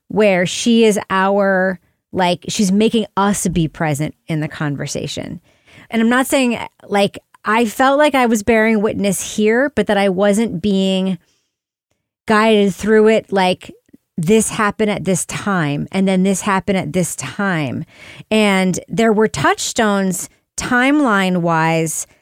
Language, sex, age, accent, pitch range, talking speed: English, female, 30-49, American, 180-220 Hz, 140 wpm